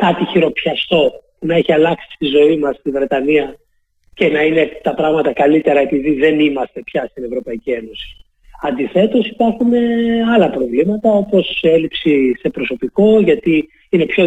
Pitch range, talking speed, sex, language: 145-220 Hz, 145 wpm, male, Greek